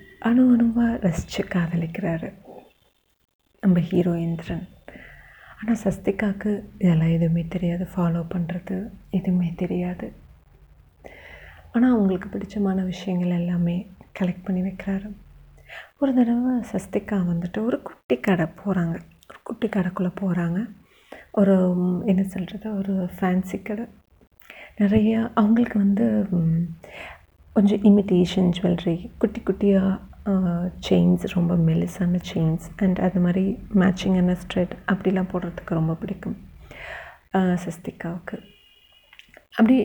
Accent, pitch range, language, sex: native, 180-210 Hz, Tamil, female